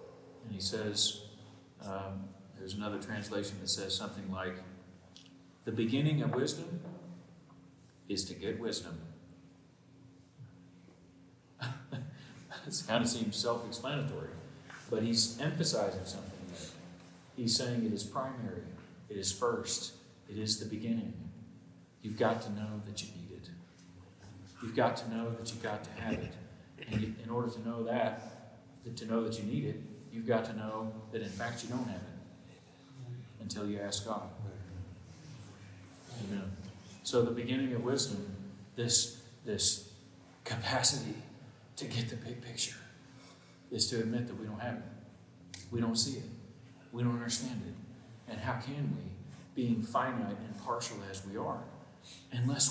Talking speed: 145 wpm